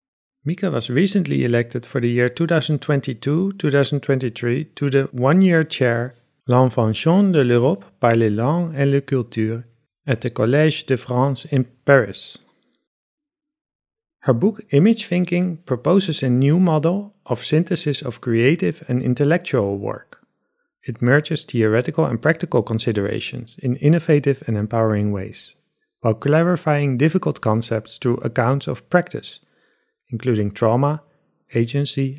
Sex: male